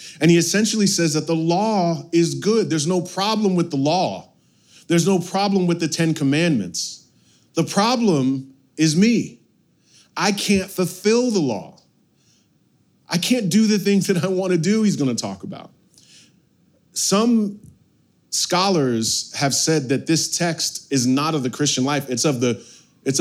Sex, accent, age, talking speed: male, American, 30-49, 155 wpm